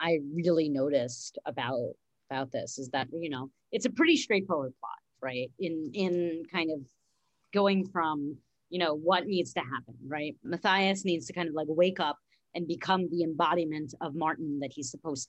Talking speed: 180 wpm